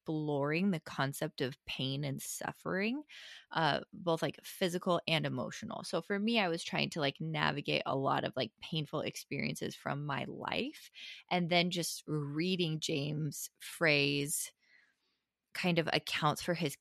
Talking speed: 150 wpm